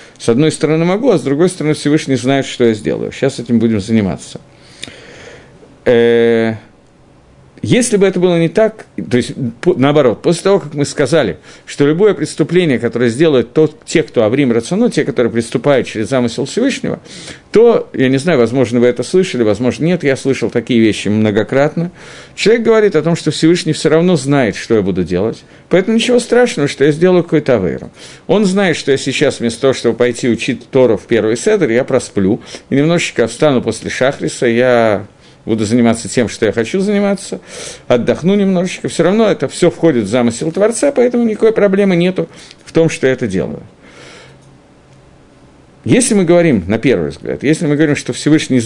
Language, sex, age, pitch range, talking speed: Russian, male, 50-69, 120-175 Hz, 175 wpm